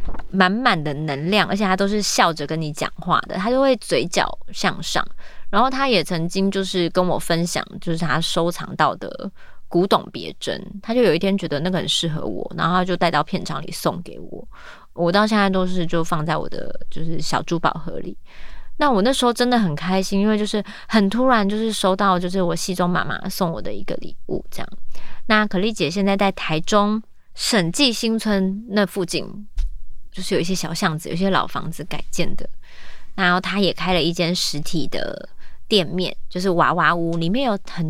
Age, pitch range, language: 20-39, 170-210 Hz, Chinese